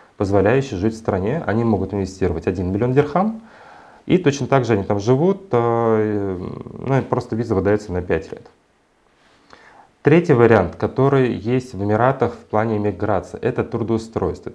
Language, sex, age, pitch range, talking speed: Russian, male, 30-49, 100-130 Hz, 150 wpm